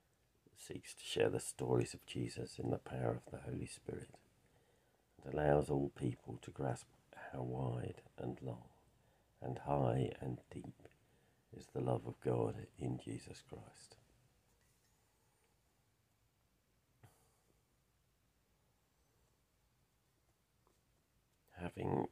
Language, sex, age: English, male, 50-69